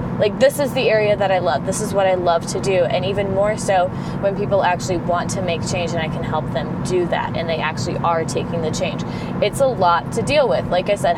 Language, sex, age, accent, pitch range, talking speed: English, female, 20-39, American, 170-220 Hz, 265 wpm